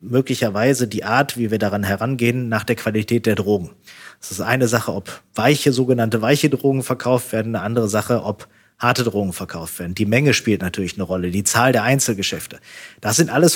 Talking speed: 195 wpm